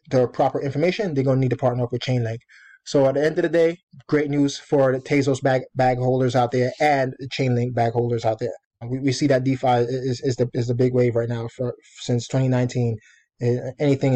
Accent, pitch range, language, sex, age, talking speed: American, 125-145 Hz, English, male, 20-39, 215 wpm